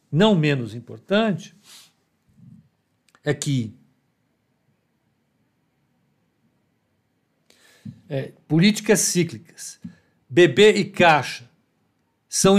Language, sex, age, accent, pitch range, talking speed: Portuguese, male, 60-79, Brazilian, 145-200 Hz, 50 wpm